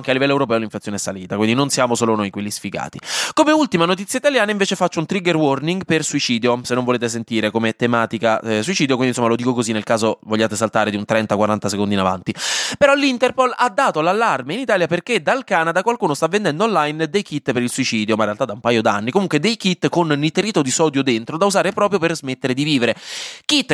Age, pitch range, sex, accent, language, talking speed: 20-39, 125-200 Hz, male, native, Italian, 230 wpm